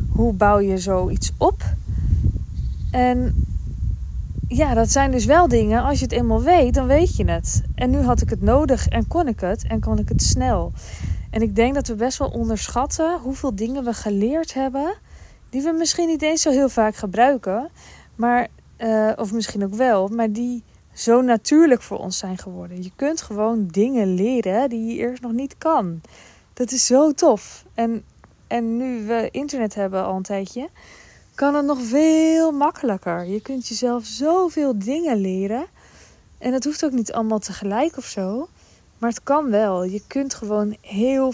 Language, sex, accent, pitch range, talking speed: Dutch, female, Dutch, 200-255 Hz, 180 wpm